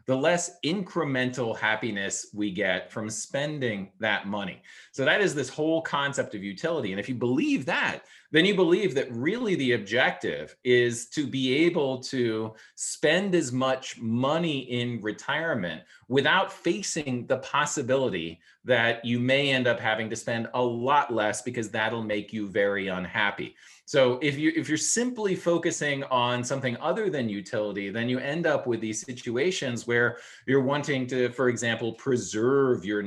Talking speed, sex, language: 165 wpm, male, English